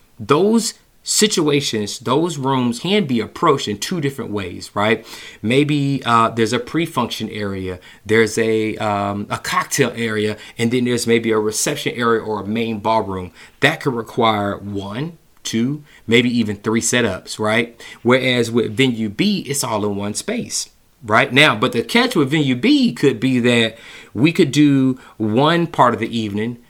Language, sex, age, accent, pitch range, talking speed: English, male, 30-49, American, 110-135 Hz, 165 wpm